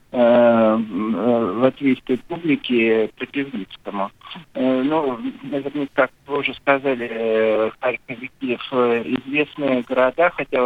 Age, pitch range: 60-79, 125-155 Hz